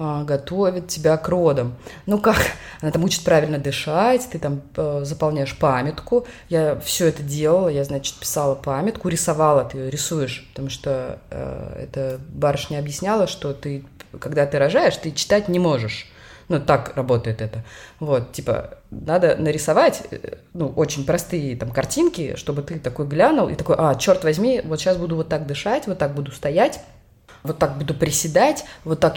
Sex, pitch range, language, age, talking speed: female, 145-180 Hz, Russian, 20-39, 165 wpm